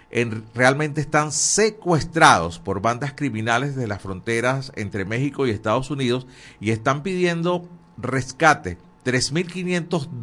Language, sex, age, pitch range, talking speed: Spanish, male, 50-69, 100-140 Hz, 110 wpm